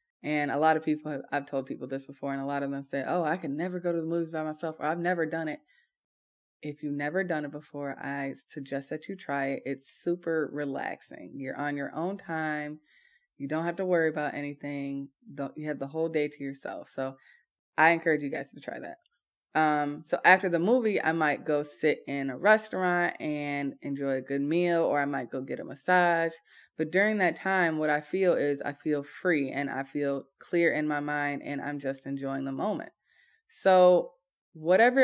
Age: 20-39